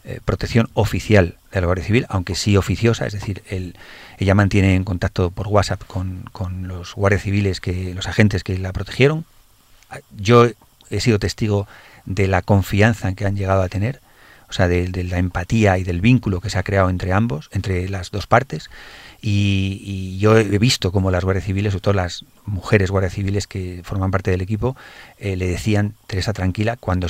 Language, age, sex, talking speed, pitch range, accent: Spanish, 40-59, male, 195 wpm, 95-110 Hz, Spanish